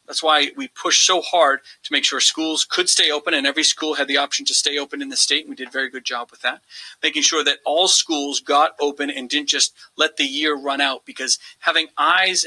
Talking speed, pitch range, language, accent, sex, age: 245 wpm, 140-180 Hz, English, American, male, 40-59